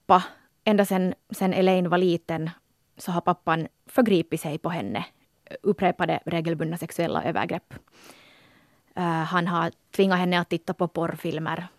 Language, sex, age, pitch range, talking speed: Swedish, female, 20-39, 170-200 Hz, 130 wpm